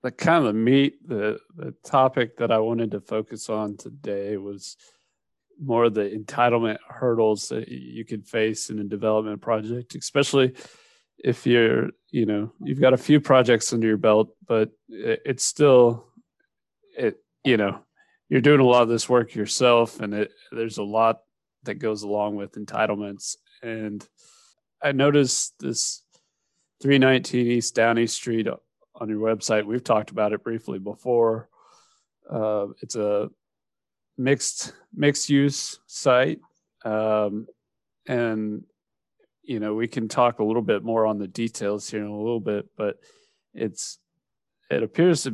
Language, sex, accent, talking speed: English, male, American, 150 wpm